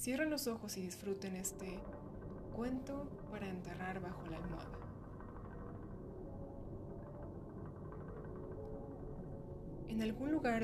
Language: Spanish